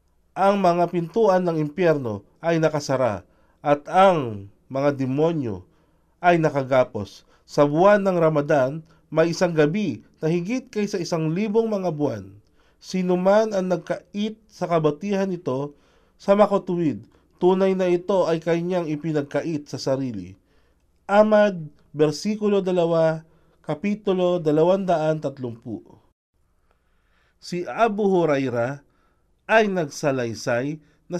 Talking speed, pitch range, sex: 105 wpm, 140-190 Hz, male